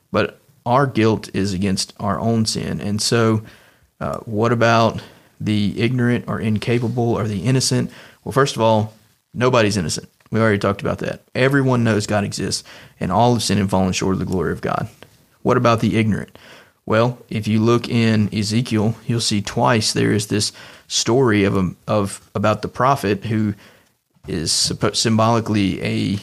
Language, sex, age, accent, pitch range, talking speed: English, male, 30-49, American, 105-120 Hz, 165 wpm